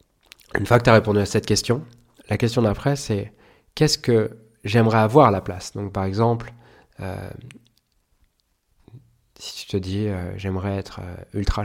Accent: French